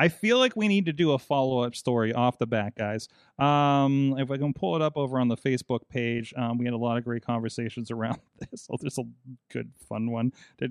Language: English